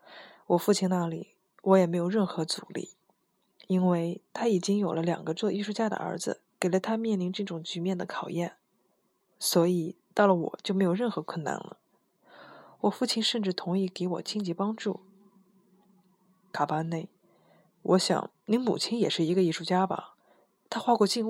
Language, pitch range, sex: Chinese, 180-215 Hz, female